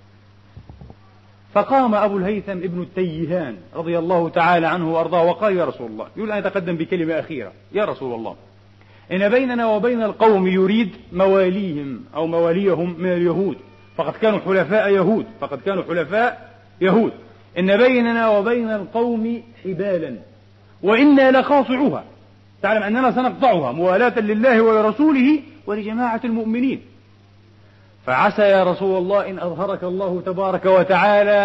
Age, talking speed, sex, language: 40-59, 120 wpm, male, Arabic